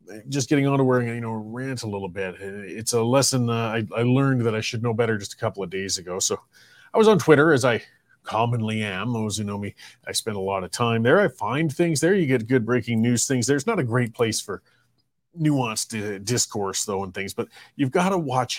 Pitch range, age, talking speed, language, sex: 115-155 Hz, 30-49, 250 wpm, English, male